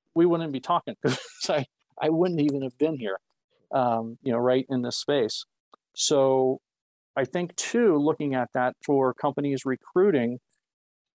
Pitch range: 125-155 Hz